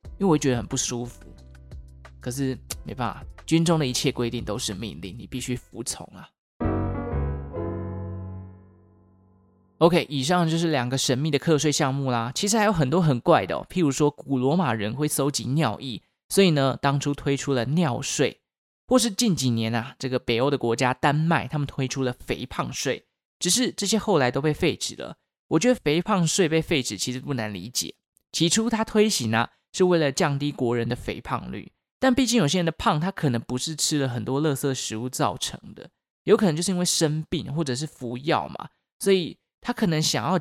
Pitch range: 120-165 Hz